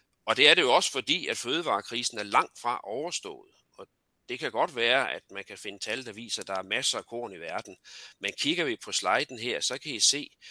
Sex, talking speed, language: male, 245 wpm, Danish